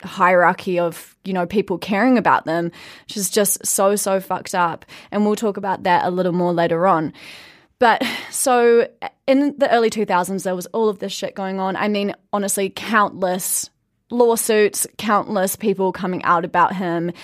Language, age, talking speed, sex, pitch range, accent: English, 20-39, 180 wpm, female, 170-205 Hz, Australian